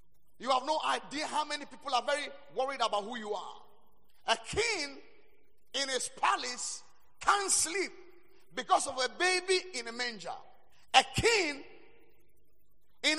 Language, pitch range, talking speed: English, 275-390 Hz, 140 wpm